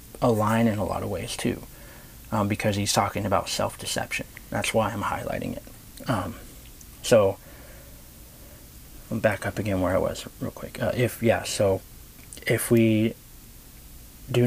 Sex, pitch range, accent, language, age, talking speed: male, 100-120 Hz, American, English, 30-49, 150 wpm